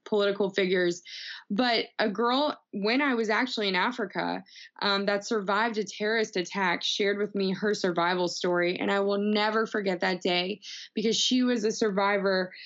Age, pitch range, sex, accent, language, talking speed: 20-39, 185-215 Hz, female, American, English, 165 wpm